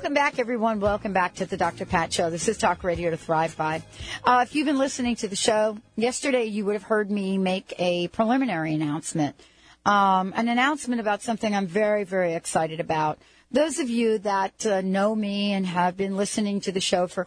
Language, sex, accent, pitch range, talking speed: English, female, American, 185-230 Hz, 210 wpm